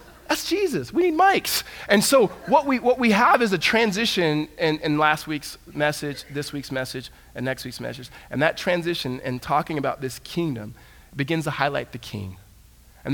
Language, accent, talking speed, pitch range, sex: English, American, 185 wpm, 125-170 Hz, male